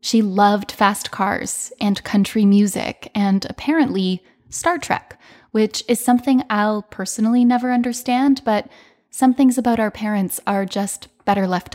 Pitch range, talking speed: 195-230 Hz, 145 wpm